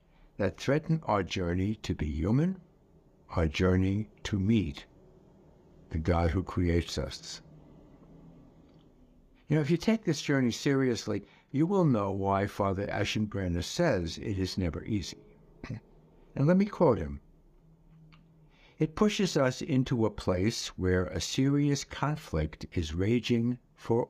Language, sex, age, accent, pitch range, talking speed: English, male, 60-79, American, 95-145 Hz, 130 wpm